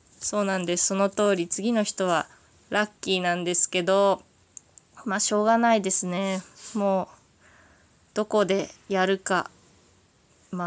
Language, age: Japanese, 20-39